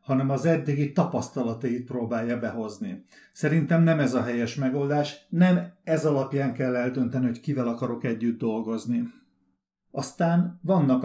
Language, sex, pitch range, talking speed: Hungarian, male, 120-165 Hz, 130 wpm